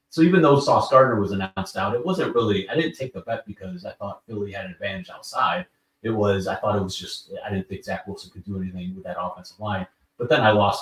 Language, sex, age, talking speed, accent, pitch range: English, male, 30-49, 260 wpm, American, 95-115 Hz